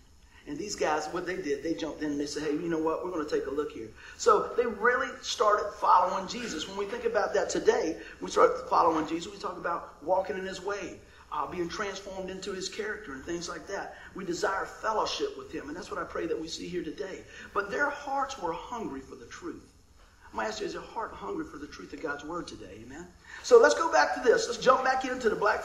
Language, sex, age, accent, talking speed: English, male, 40-59, American, 255 wpm